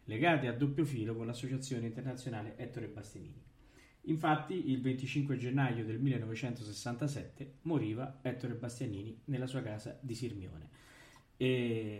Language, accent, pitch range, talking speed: Italian, native, 115-135 Hz, 120 wpm